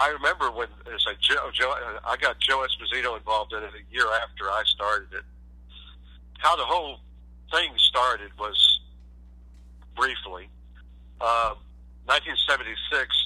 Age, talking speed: 60-79, 115 wpm